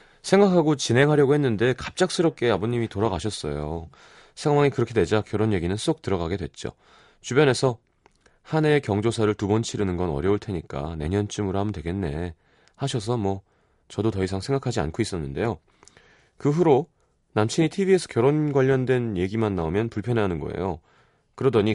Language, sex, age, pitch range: Korean, male, 30-49, 95-135 Hz